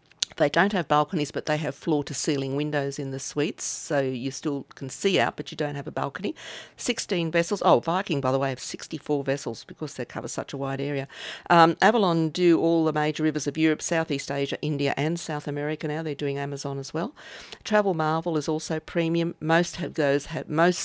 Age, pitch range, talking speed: 50-69, 135-160 Hz, 200 wpm